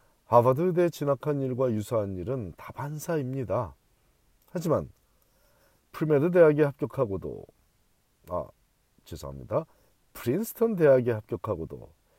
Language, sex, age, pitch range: Korean, male, 40-59, 105-145 Hz